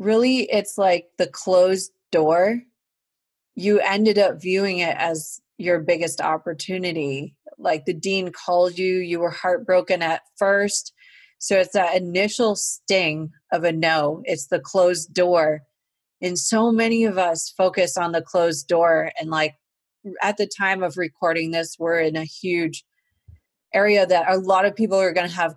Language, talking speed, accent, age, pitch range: English, 160 wpm, American, 30-49, 165-195 Hz